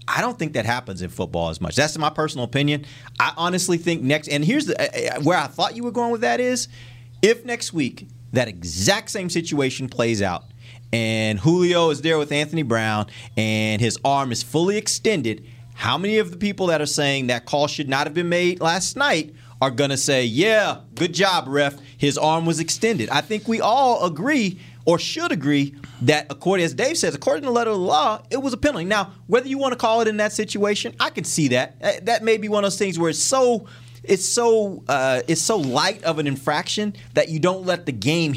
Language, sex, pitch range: English, male, 120-185 Hz